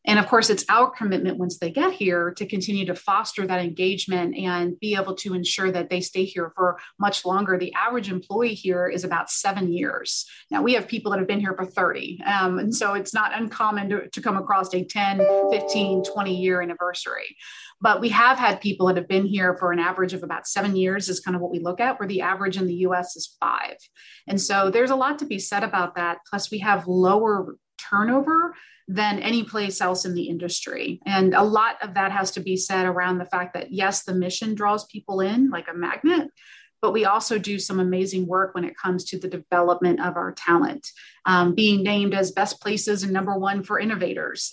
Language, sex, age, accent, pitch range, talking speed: English, female, 30-49, American, 180-205 Hz, 220 wpm